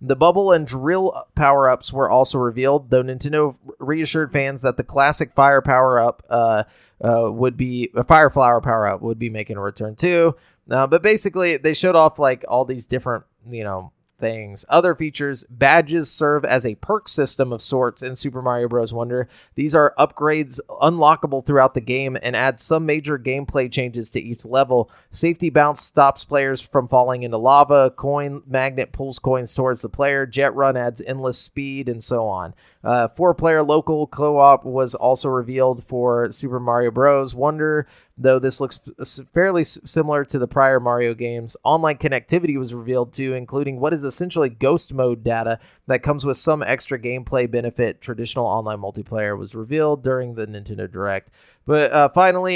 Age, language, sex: 30-49, English, male